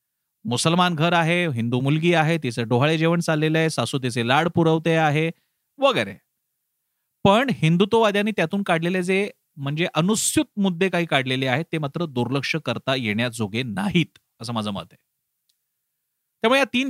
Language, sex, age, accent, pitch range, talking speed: Marathi, male, 40-59, native, 130-185 Hz, 90 wpm